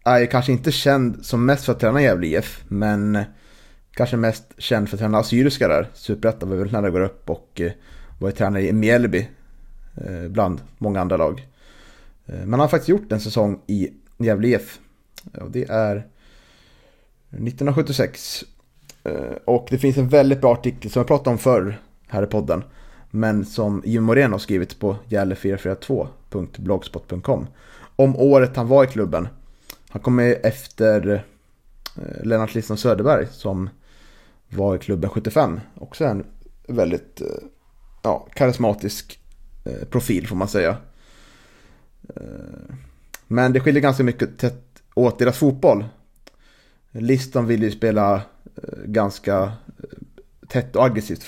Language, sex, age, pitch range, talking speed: Swedish, male, 30-49, 100-125 Hz, 140 wpm